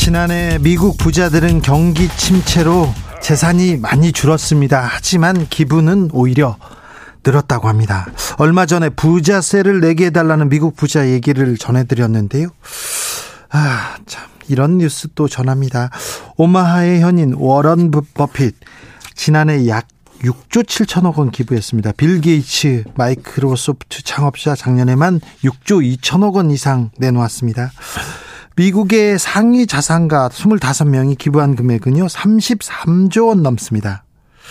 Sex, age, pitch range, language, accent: male, 40-59, 130-180 Hz, Korean, native